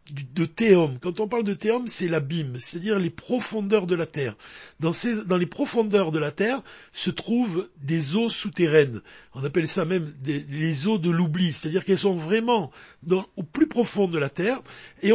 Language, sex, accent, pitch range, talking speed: French, male, French, 160-220 Hz, 180 wpm